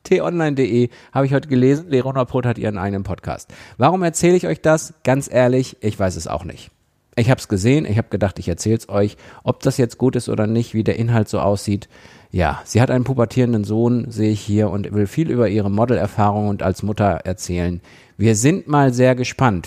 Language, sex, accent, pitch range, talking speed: German, male, German, 100-130 Hz, 215 wpm